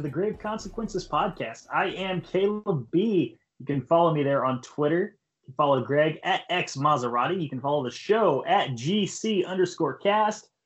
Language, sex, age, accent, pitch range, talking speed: English, male, 20-39, American, 130-175 Hz, 175 wpm